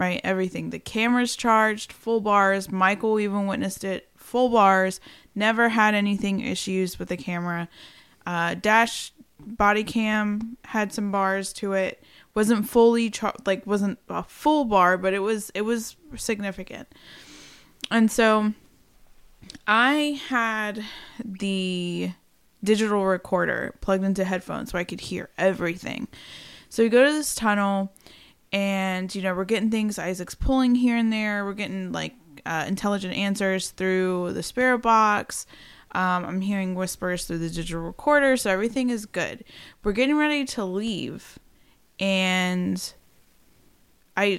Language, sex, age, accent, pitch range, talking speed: English, female, 20-39, American, 185-225 Hz, 140 wpm